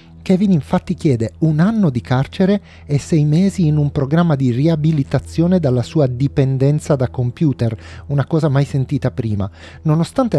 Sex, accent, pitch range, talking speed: male, native, 115-155 Hz, 150 wpm